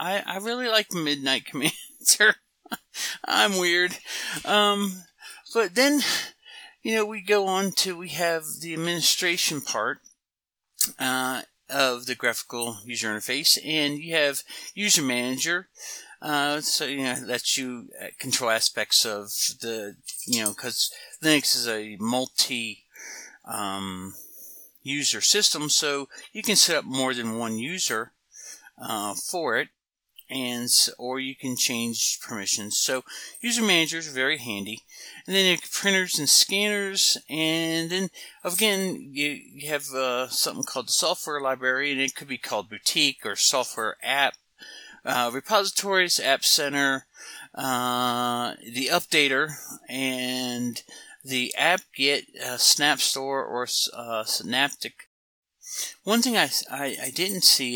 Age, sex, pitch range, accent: 50-69, male, 125-180 Hz, American